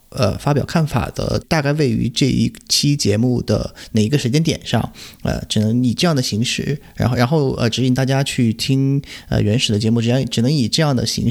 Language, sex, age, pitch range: Chinese, male, 30-49, 105-135 Hz